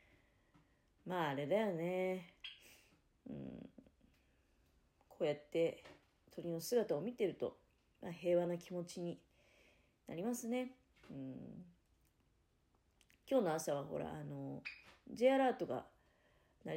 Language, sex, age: Japanese, female, 40-59